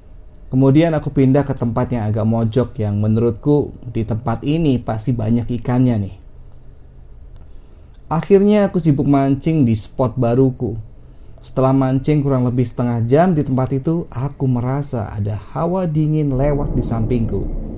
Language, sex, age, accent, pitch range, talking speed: Indonesian, male, 20-39, native, 115-150 Hz, 140 wpm